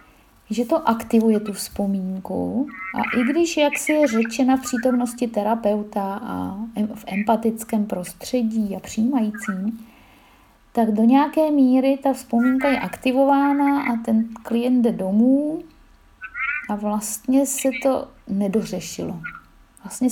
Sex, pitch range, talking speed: female, 210-255 Hz, 120 wpm